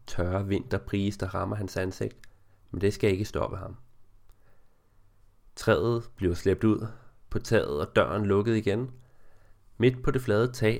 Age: 30-49